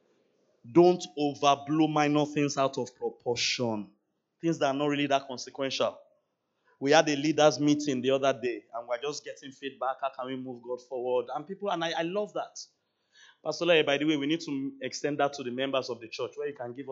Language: English